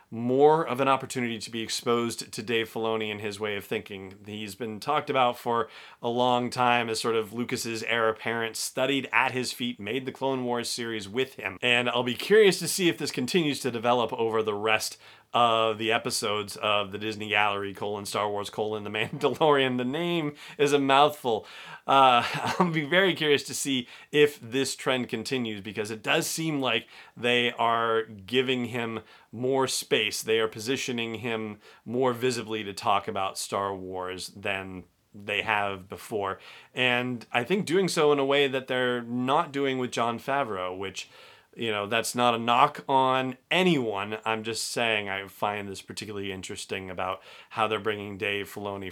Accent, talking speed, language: American, 180 wpm, English